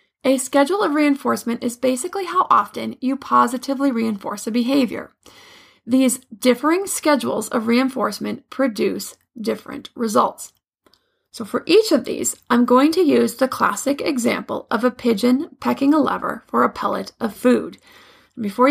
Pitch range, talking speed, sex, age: 235-285 Hz, 145 wpm, female, 30-49